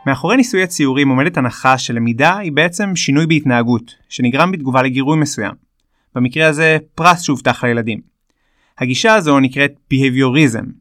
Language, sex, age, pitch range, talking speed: Hebrew, male, 30-49, 125-155 Hz, 135 wpm